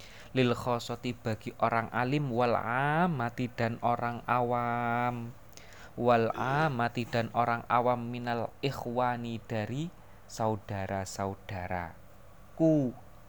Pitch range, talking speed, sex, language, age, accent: 100-120 Hz, 80 wpm, male, Indonesian, 20-39, native